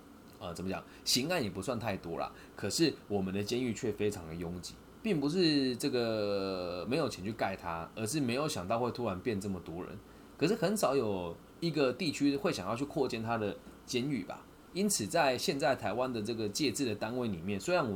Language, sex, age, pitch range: Chinese, male, 20-39, 95-140 Hz